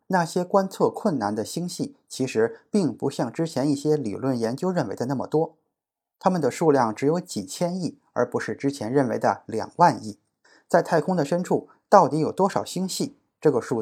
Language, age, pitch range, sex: Chinese, 20-39, 130-170 Hz, male